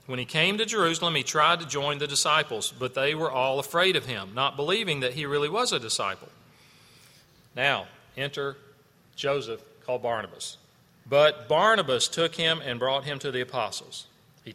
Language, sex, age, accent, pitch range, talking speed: English, male, 40-59, American, 130-165 Hz, 175 wpm